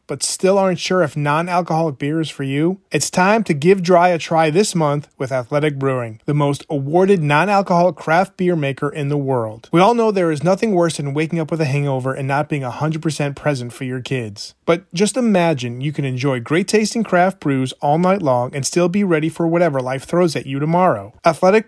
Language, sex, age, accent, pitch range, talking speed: English, male, 30-49, American, 140-185 Hz, 215 wpm